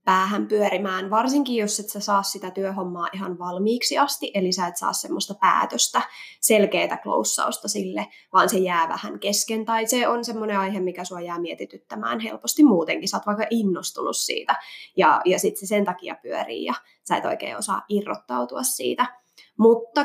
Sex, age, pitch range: female, 20-39, 185-220 Hz